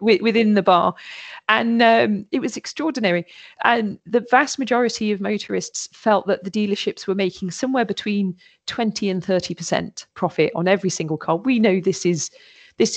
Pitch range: 175-225 Hz